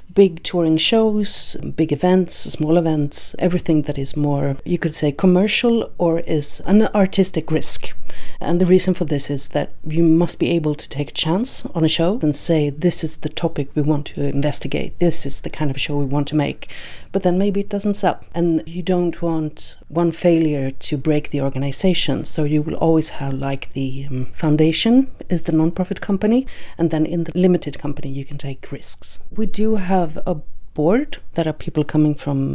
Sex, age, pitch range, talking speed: female, 40-59, 150-185 Hz, 195 wpm